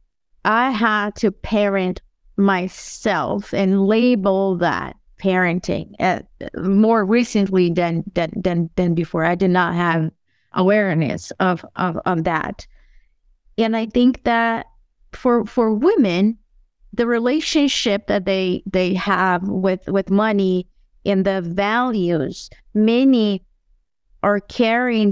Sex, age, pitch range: female, 30-49, 195-235 Hz